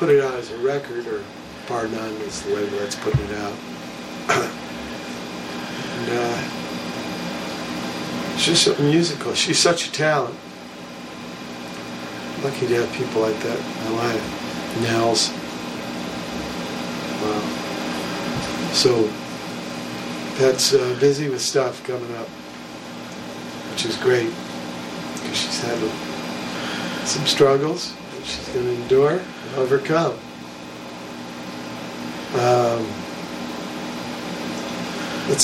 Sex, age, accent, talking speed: male, 50-69, American, 100 wpm